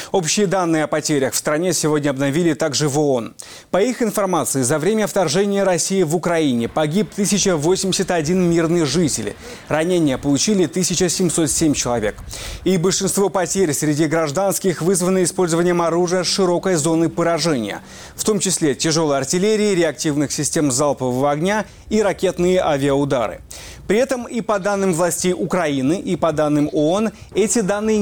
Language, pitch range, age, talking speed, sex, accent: Ukrainian, 150-190 Hz, 30-49, 135 wpm, male, native